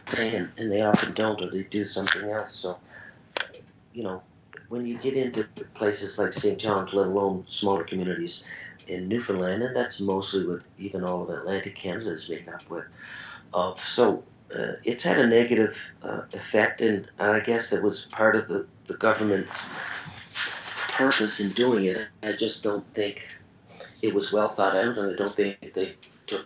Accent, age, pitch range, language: American, 40-59, 90-110 Hz, English